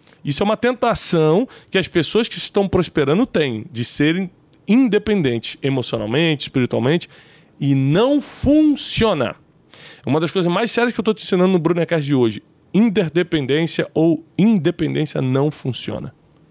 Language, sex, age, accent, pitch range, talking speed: Portuguese, male, 20-39, Brazilian, 130-175 Hz, 140 wpm